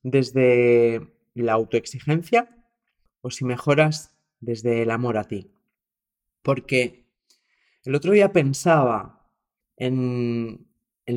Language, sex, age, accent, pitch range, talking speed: Spanish, male, 30-49, Spanish, 115-145 Hz, 95 wpm